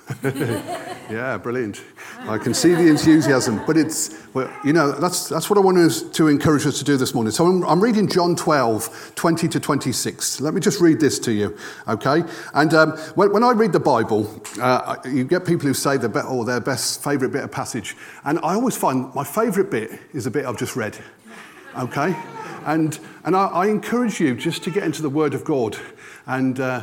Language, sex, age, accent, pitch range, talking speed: English, male, 40-59, British, 130-170 Hz, 210 wpm